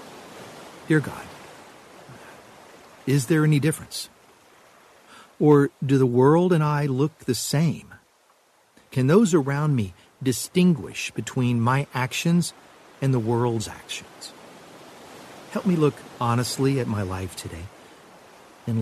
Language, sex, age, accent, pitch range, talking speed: English, male, 50-69, American, 115-145 Hz, 115 wpm